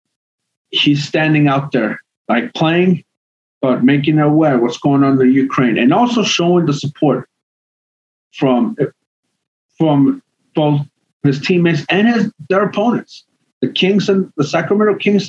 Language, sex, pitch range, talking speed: English, male, 130-180 Hz, 135 wpm